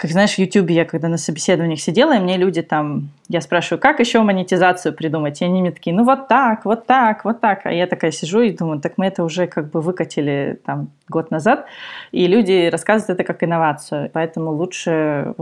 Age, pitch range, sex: 20-39, 155-190 Hz, female